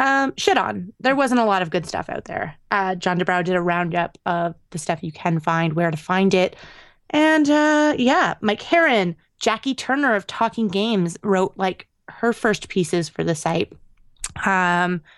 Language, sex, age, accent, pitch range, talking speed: English, female, 20-39, American, 175-220 Hz, 185 wpm